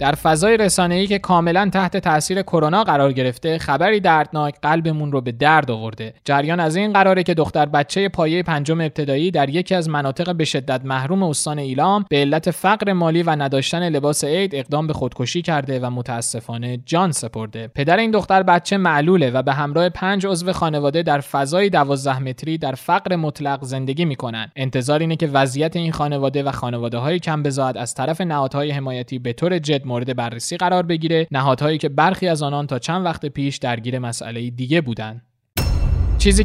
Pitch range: 135-180 Hz